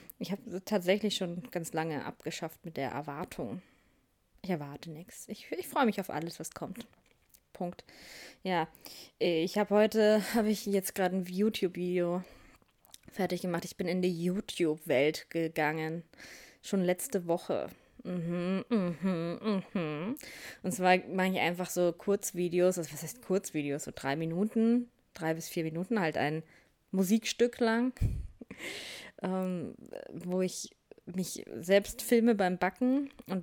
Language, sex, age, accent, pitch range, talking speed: German, female, 20-39, German, 170-210 Hz, 135 wpm